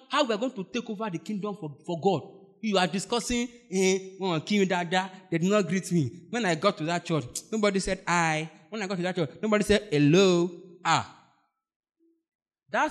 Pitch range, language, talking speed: 180-265 Hz, English, 190 wpm